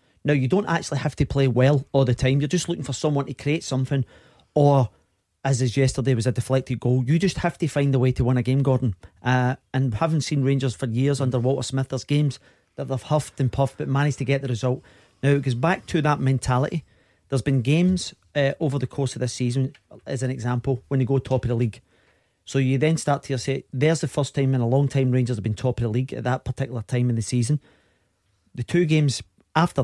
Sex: male